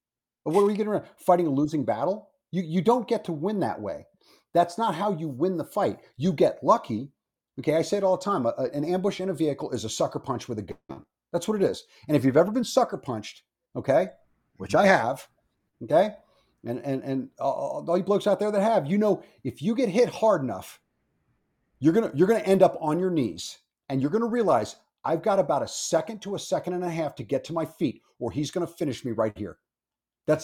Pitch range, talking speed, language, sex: 145-205 Hz, 245 wpm, English, male